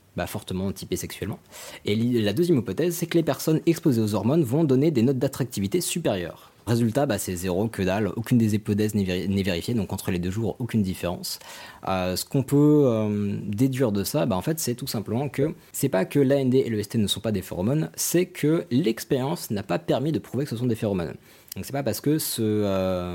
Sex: male